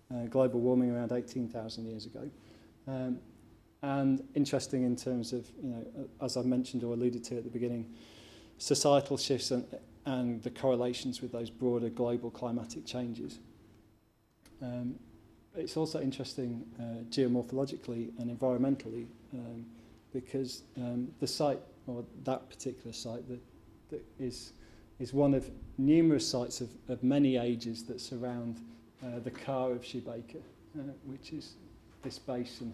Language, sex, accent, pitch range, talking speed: English, male, British, 115-130 Hz, 145 wpm